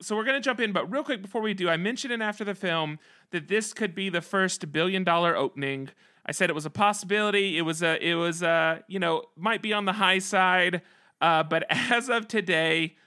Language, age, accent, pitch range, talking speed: English, 30-49, American, 160-200 Hz, 240 wpm